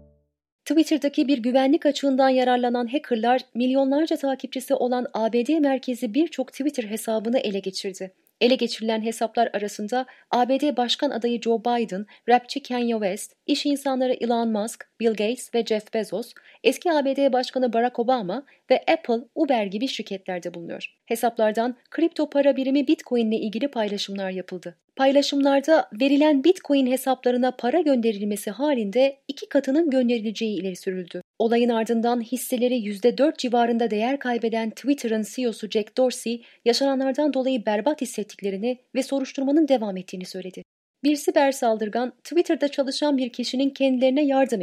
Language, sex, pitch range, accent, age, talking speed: Turkish, female, 215-275 Hz, native, 30-49, 130 wpm